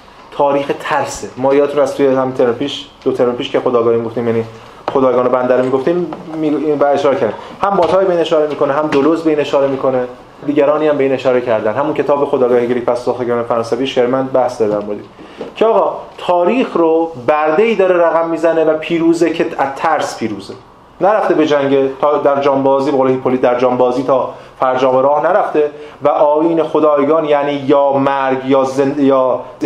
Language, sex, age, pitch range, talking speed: Persian, male, 30-49, 130-160 Hz, 170 wpm